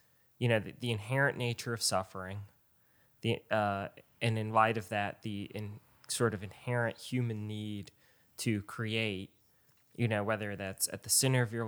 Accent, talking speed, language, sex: American, 170 wpm, English, male